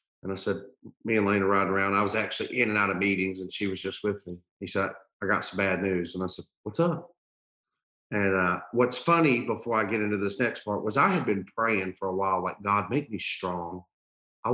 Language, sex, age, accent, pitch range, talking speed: English, male, 40-59, American, 95-115 Hz, 245 wpm